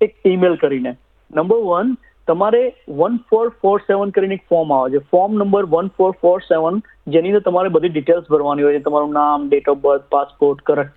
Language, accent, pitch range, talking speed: Gujarati, native, 165-210 Hz, 190 wpm